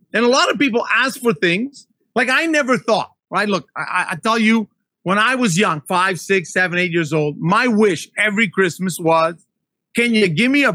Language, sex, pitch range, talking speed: English, male, 185-235 Hz, 210 wpm